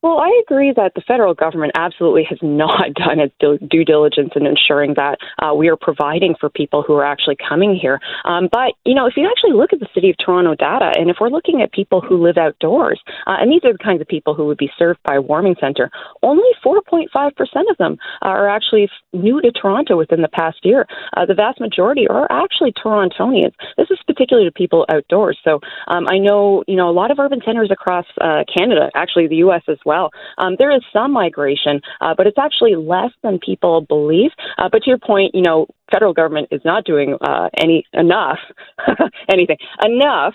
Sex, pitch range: female, 155-235 Hz